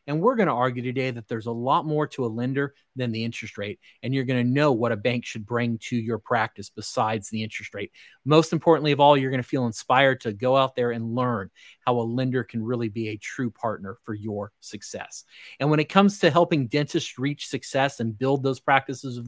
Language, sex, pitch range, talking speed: English, male, 115-135 Hz, 235 wpm